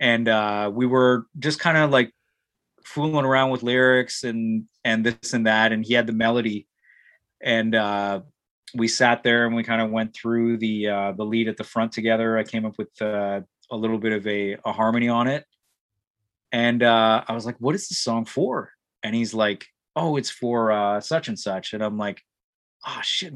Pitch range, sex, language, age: 110-135 Hz, male, English, 30-49